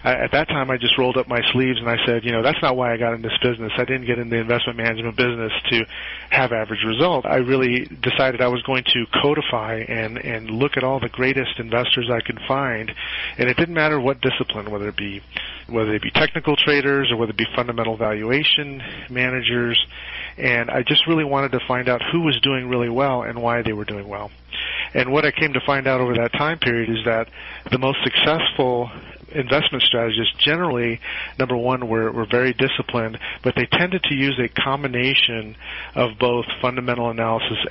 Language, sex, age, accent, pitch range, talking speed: English, male, 30-49, American, 115-130 Hz, 205 wpm